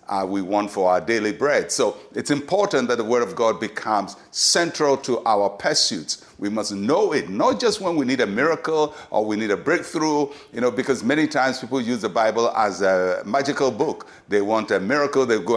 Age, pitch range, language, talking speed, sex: 60-79, 110-145 Hz, English, 210 wpm, male